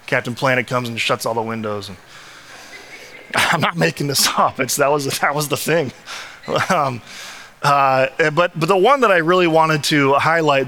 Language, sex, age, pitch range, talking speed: English, male, 20-39, 135-170 Hz, 180 wpm